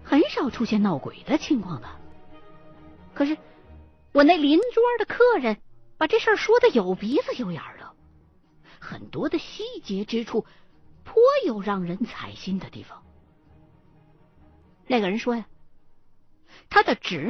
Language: Chinese